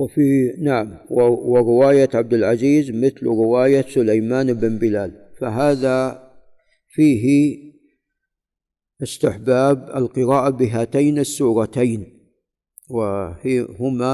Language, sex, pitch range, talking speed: Arabic, male, 115-140 Hz, 70 wpm